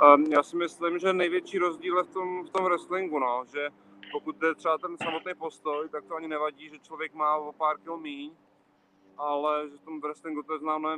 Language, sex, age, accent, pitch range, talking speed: Czech, male, 30-49, native, 135-150 Hz, 220 wpm